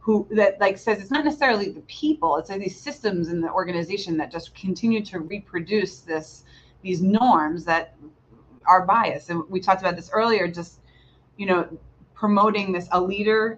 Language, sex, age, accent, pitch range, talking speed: English, female, 30-49, American, 165-200 Hz, 170 wpm